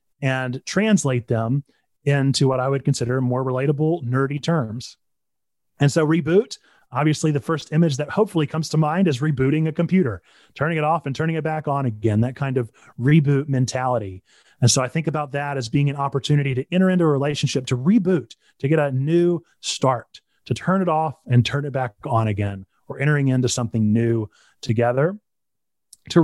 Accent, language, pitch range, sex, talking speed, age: American, English, 130-165 Hz, male, 185 wpm, 30-49